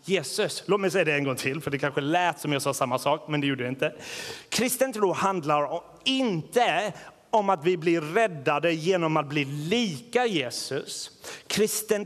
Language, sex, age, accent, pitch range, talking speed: Swedish, male, 30-49, native, 150-195 Hz, 185 wpm